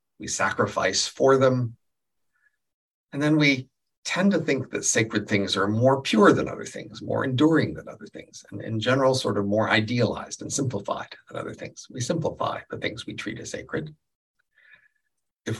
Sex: male